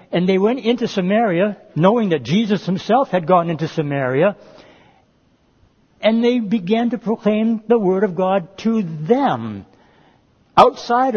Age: 60-79